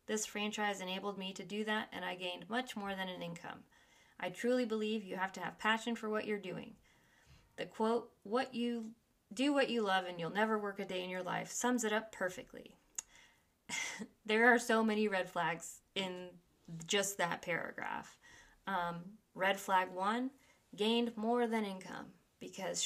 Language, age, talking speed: English, 20-39, 175 wpm